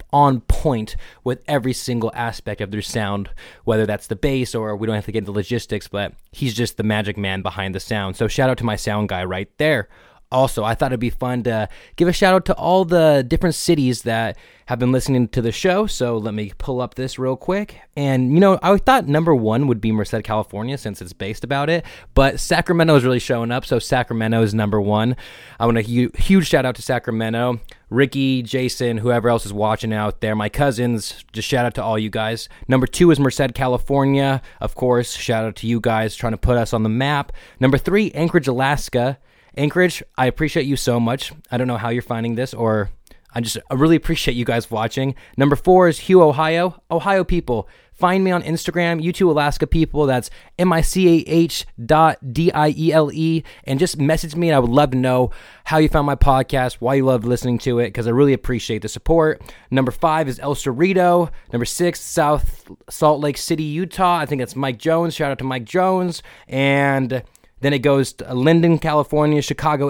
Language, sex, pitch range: English, male, 115-155 Hz